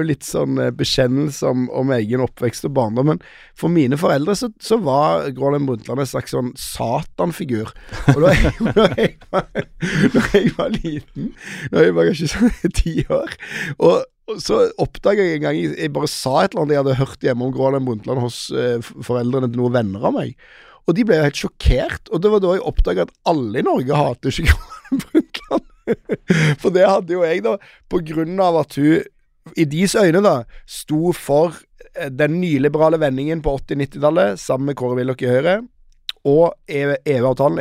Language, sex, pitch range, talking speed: English, male, 125-170 Hz, 170 wpm